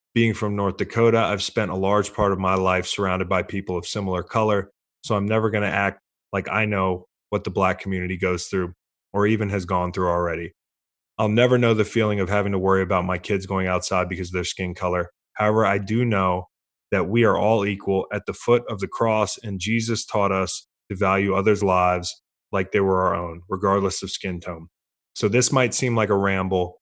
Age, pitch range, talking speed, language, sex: 20-39, 90-105 Hz, 215 wpm, English, male